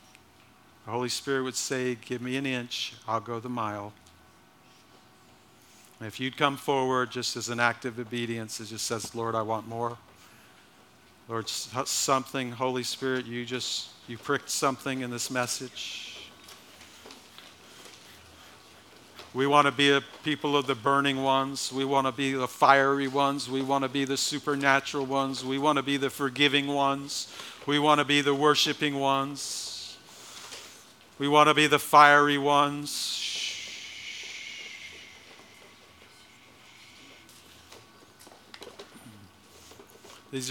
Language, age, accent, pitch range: English, 50-69, American, 120-145 Hz